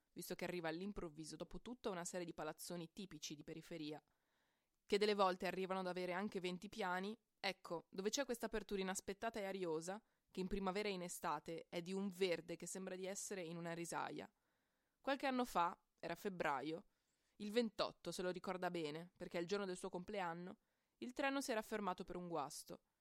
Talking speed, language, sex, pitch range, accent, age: 190 wpm, Italian, female, 170-215 Hz, native, 20-39